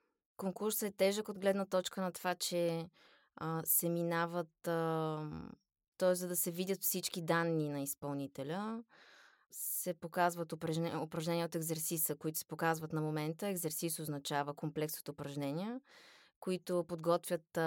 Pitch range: 155-180 Hz